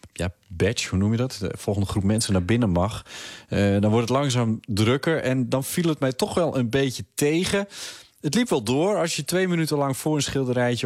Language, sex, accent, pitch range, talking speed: Dutch, male, Dutch, 110-135 Hz, 225 wpm